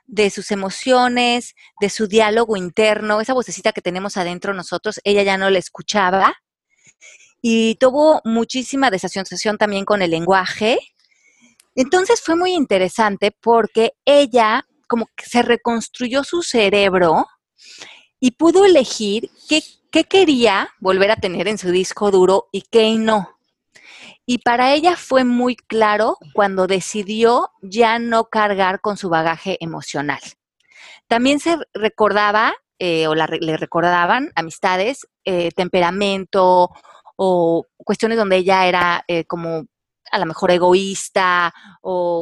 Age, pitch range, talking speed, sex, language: 30-49, 185-245 Hz, 130 wpm, female, Spanish